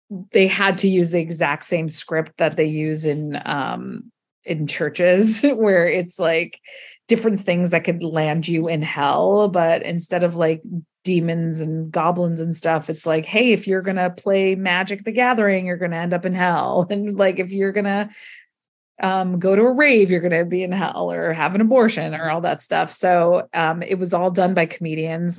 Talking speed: 195 wpm